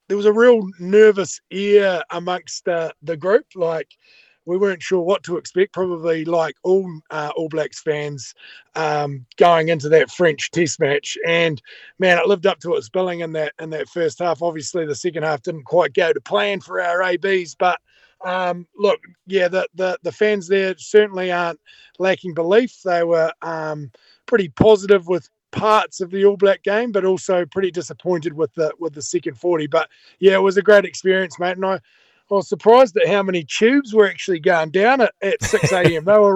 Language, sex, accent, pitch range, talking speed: English, male, Australian, 170-215 Hz, 195 wpm